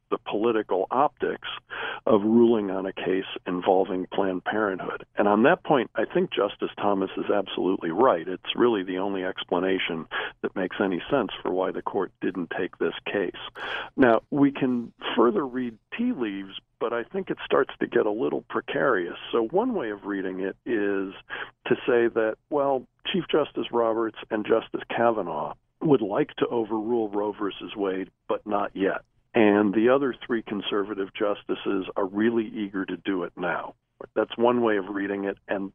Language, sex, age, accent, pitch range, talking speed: English, male, 50-69, American, 100-120 Hz, 175 wpm